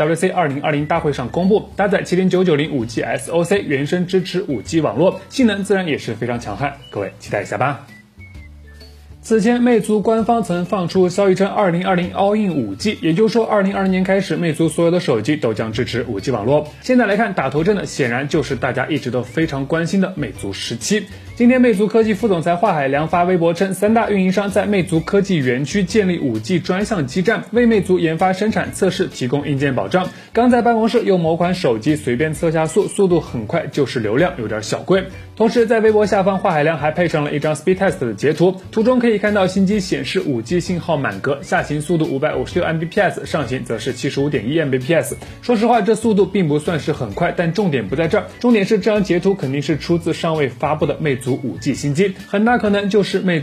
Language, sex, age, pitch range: Chinese, male, 20-39, 145-200 Hz